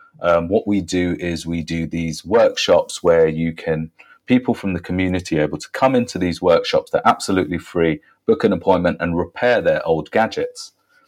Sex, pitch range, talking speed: male, 90-150 Hz, 185 wpm